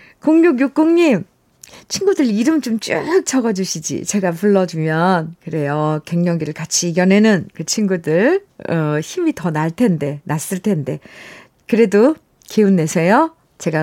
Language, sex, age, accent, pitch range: Korean, female, 50-69, native, 175-255 Hz